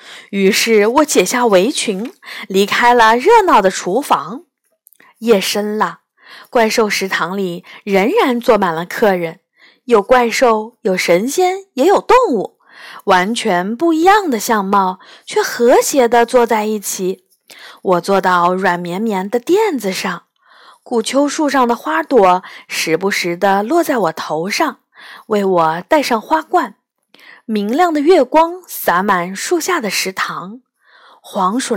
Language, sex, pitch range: Chinese, female, 195-310 Hz